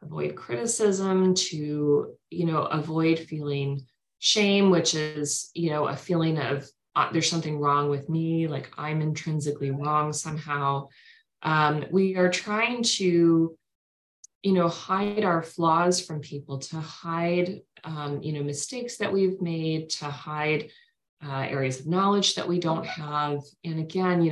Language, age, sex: English, 30-49, female